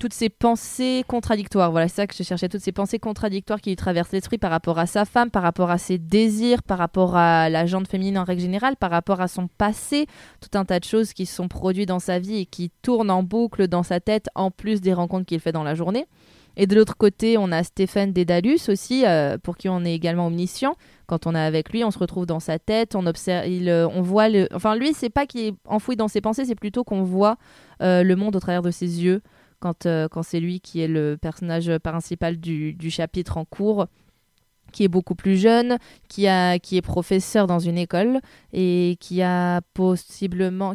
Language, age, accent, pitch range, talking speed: French, 20-39, French, 175-210 Hz, 235 wpm